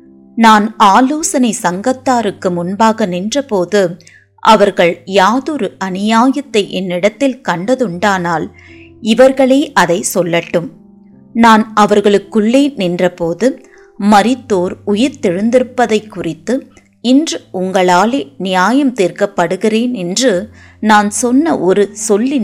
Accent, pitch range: native, 175-250 Hz